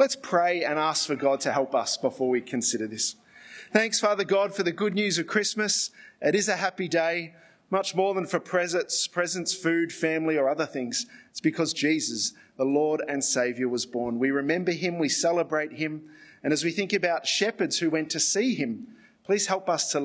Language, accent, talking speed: English, Australian, 205 wpm